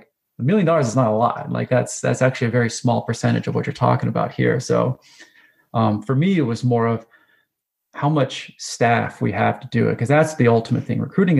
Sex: male